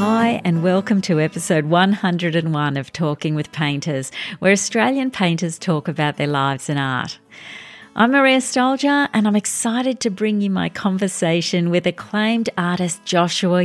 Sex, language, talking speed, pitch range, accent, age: female, English, 150 wpm, 160-210 Hz, Australian, 50-69